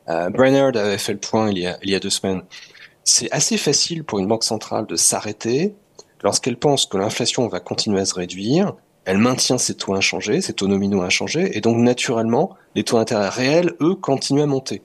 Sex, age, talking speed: male, 30-49, 210 wpm